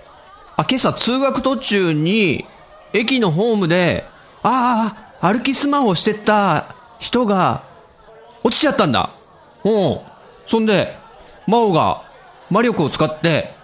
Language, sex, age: Japanese, male, 40-59